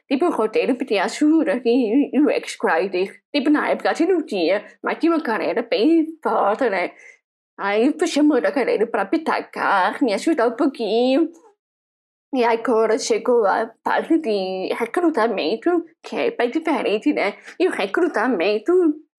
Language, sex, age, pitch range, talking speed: Portuguese, female, 20-39, 220-330 Hz, 145 wpm